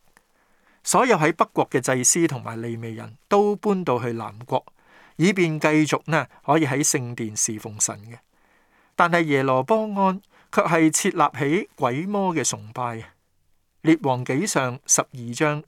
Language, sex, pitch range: Chinese, male, 125-160 Hz